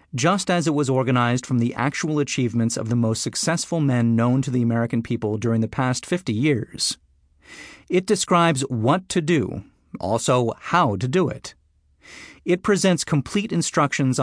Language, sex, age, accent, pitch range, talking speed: English, male, 40-59, American, 110-150 Hz, 160 wpm